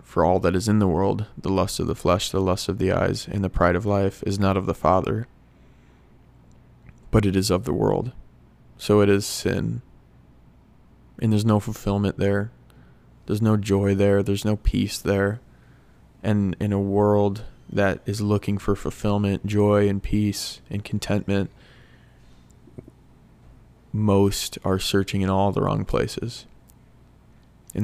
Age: 20-39